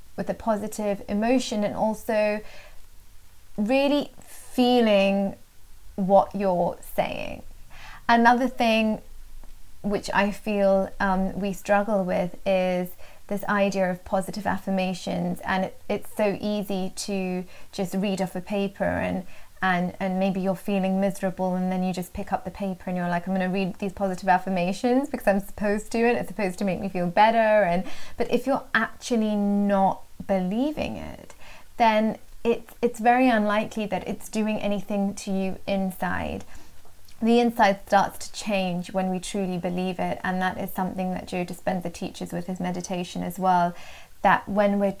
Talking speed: 160 wpm